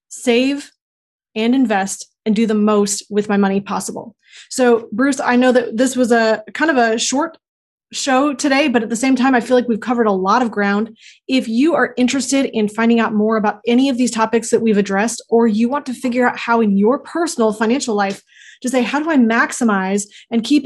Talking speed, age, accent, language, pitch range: 220 wpm, 20-39, American, English, 210-245 Hz